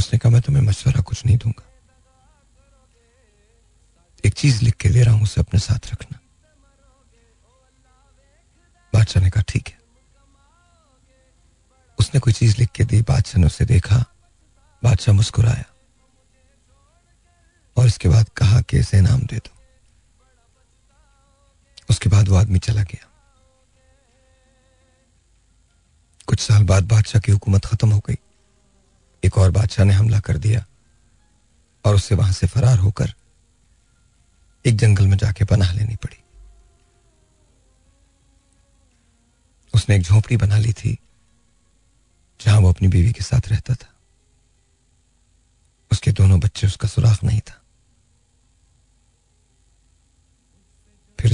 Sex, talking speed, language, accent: male, 115 wpm, Hindi, native